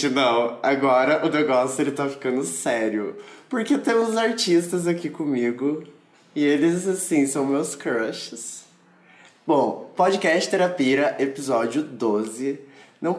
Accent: Brazilian